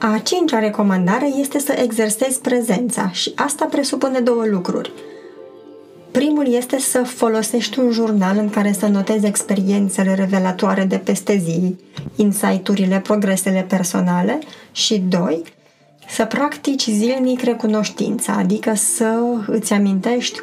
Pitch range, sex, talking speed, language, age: 205-255 Hz, female, 120 wpm, Romanian, 20-39